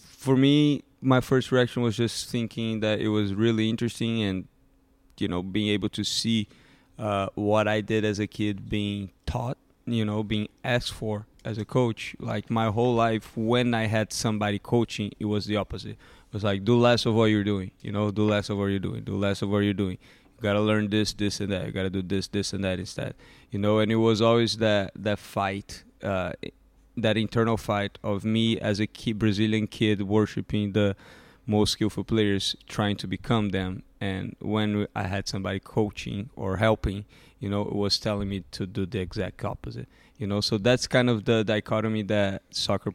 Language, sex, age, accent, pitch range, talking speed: English, male, 20-39, Brazilian, 100-110 Hz, 205 wpm